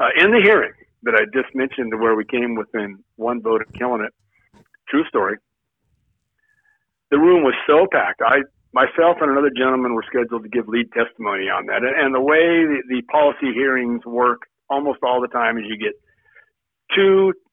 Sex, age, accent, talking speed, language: male, 50-69, American, 180 wpm, English